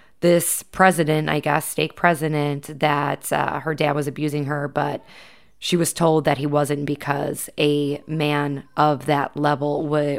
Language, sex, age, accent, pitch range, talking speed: English, female, 20-39, American, 150-175 Hz, 160 wpm